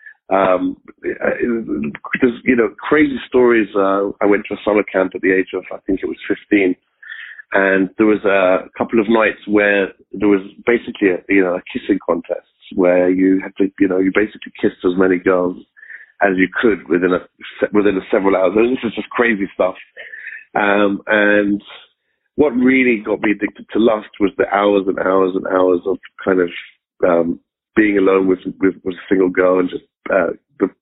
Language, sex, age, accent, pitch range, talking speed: English, male, 40-59, British, 90-105 Hz, 190 wpm